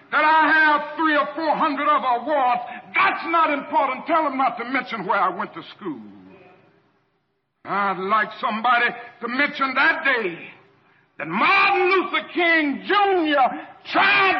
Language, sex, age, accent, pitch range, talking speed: English, male, 60-79, American, 255-360 Hz, 145 wpm